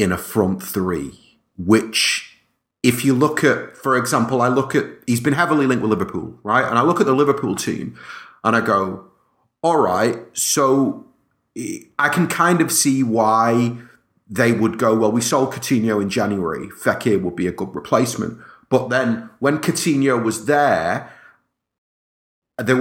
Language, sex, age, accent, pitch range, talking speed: English, male, 30-49, British, 115-150 Hz, 160 wpm